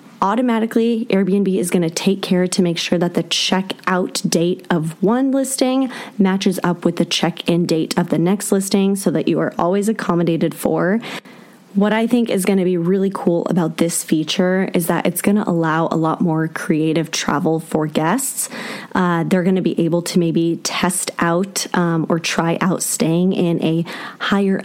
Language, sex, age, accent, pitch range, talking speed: English, female, 20-39, American, 170-205 Hz, 190 wpm